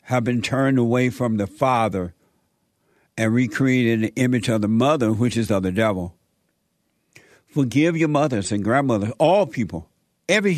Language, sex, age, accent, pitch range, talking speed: English, male, 60-79, American, 115-160 Hz, 160 wpm